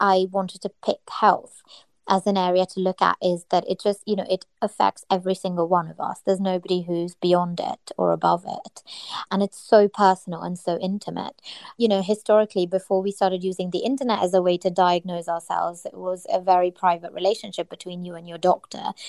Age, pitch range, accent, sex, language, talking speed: 20-39, 180-205 Hz, British, female, English, 205 wpm